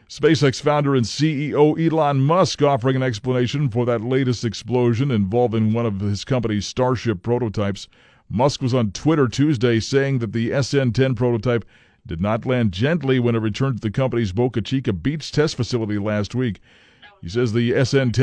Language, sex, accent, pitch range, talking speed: English, male, American, 105-140 Hz, 170 wpm